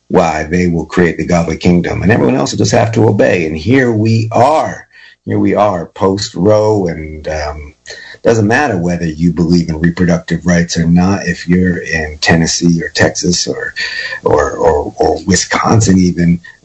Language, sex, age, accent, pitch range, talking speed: English, male, 50-69, American, 85-105 Hz, 180 wpm